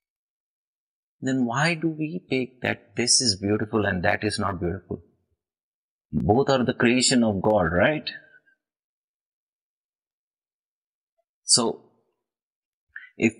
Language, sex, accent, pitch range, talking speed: English, male, Indian, 105-145 Hz, 105 wpm